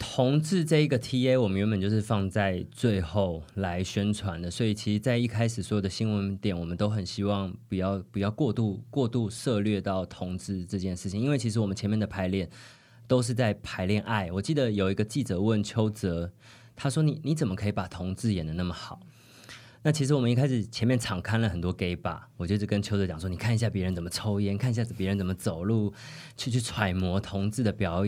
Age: 20-39